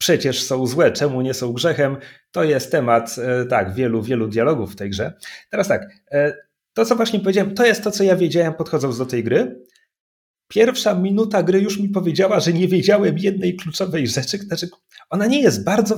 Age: 30-49